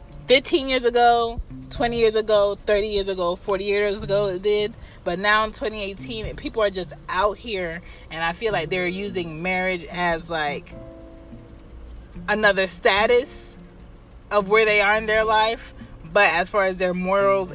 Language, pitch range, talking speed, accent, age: English, 175-220 Hz, 160 wpm, American, 20-39